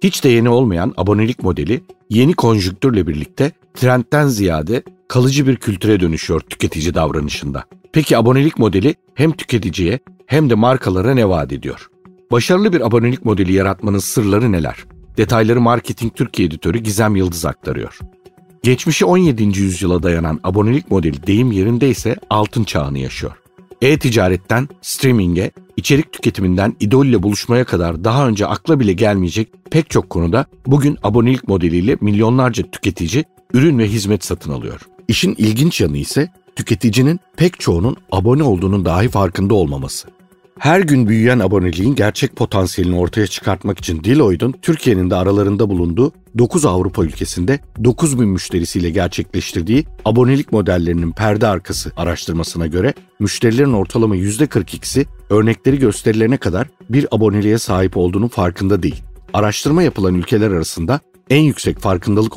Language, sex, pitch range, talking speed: Turkish, male, 95-135 Hz, 135 wpm